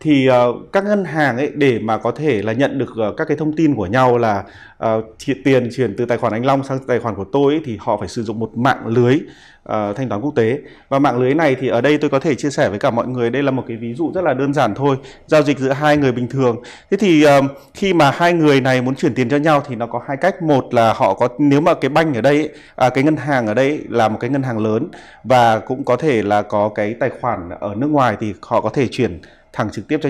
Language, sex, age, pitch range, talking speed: Vietnamese, male, 20-39, 115-145 Hz, 285 wpm